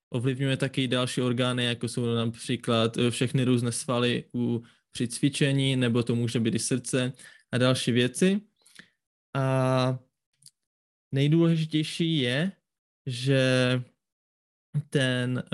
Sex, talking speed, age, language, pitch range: male, 110 wpm, 20-39, Czech, 125-140 Hz